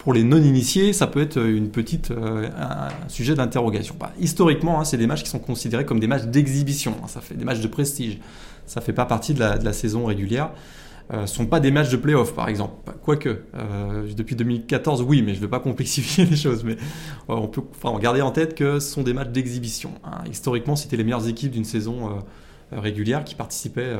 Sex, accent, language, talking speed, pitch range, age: male, French, French, 210 wpm, 110-140 Hz, 20-39